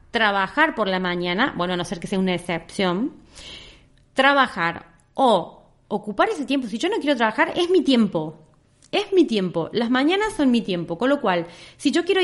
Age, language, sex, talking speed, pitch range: 30-49, Spanish, female, 190 wpm, 180-280 Hz